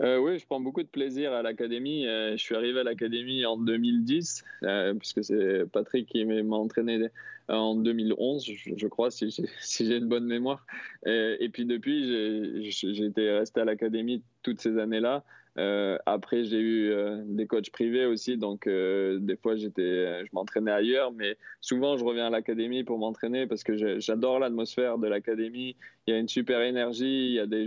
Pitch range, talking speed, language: 110-125 Hz, 200 wpm, French